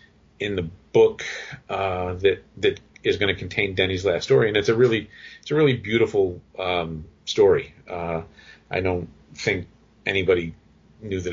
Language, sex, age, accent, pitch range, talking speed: English, male, 40-59, American, 85-110 Hz, 160 wpm